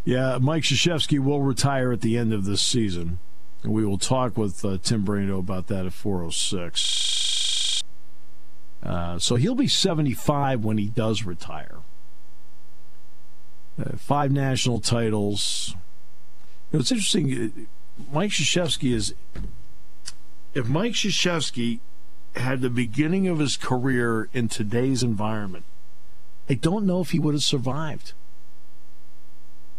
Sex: male